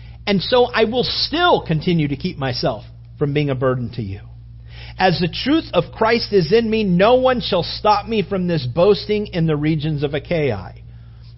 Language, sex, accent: English, male, American